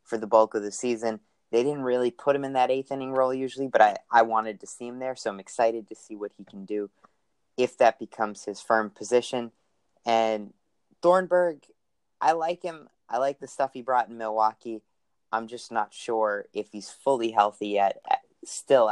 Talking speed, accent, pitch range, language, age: 200 wpm, American, 105-130 Hz, English, 30-49